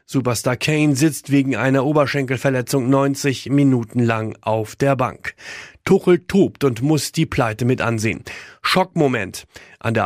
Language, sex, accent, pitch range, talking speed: German, male, German, 125-155 Hz, 135 wpm